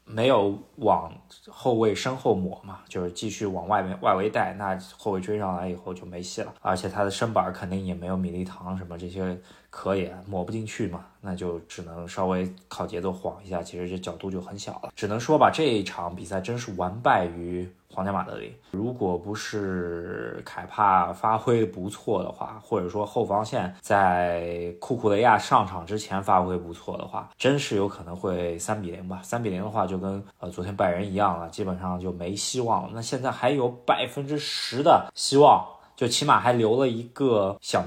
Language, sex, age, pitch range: Chinese, male, 20-39, 90-110 Hz